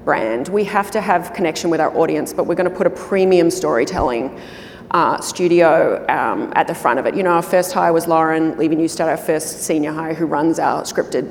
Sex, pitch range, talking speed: female, 165-195 Hz, 225 wpm